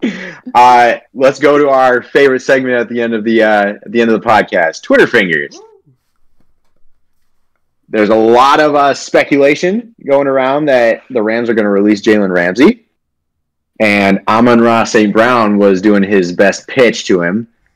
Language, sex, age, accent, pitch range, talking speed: English, male, 30-49, American, 80-120 Hz, 170 wpm